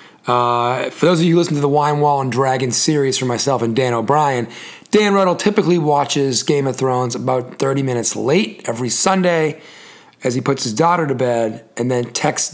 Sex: male